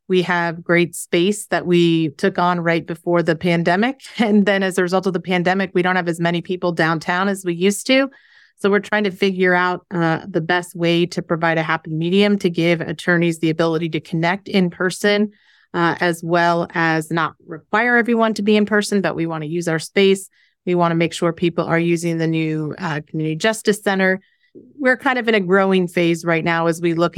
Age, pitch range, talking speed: 30-49, 170-195 Hz, 220 wpm